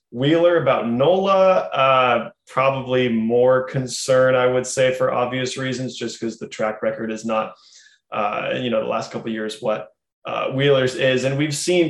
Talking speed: 175 wpm